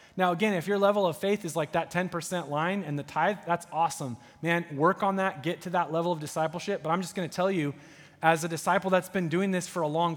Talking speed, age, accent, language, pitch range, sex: 255 wpm, 20-39, American, English, 150-190 Hz, male